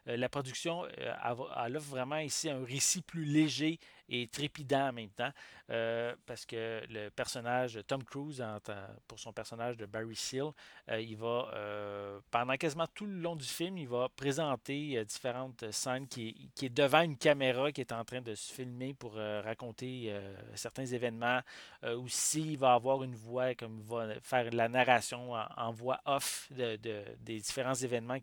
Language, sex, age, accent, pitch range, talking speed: English, male, 40-59, Canadian, 115-140 Hz, 185 wpm